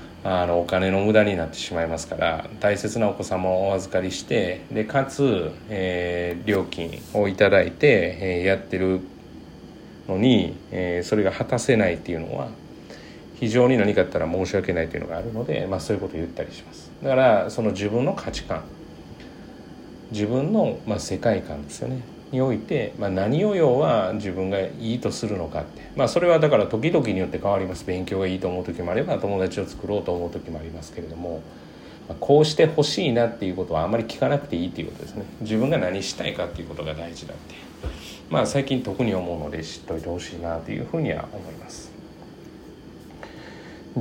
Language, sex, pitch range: Japanese, male, 90-120 Hz